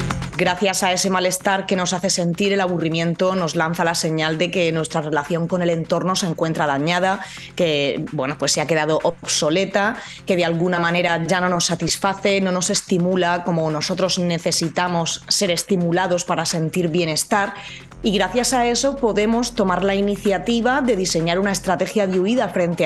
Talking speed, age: 170 wpm, 20-39